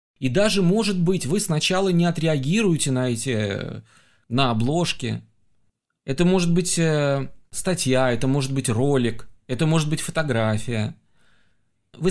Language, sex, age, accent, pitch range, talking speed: Russian, male, 30-49, native, 125-175 Hz, 130 wpm